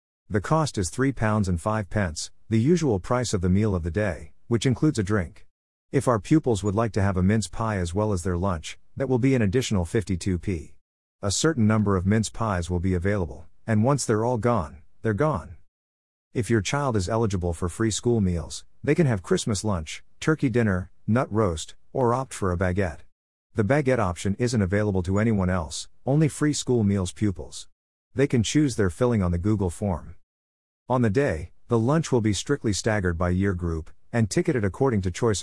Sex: male